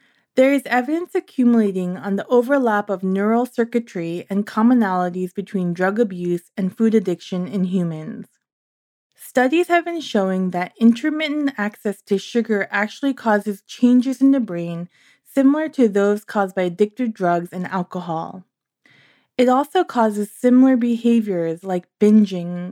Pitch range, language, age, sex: 185-245 Hz, English, 20-39, female